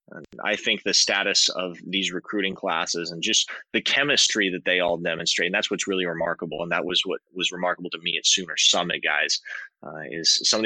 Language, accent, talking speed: English, American, 215 wpm